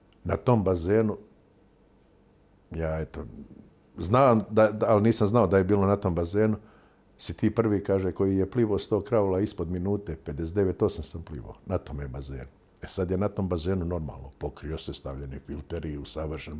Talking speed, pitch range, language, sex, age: 165 wpm, 80-105 Hz, Croatian, male, 50-69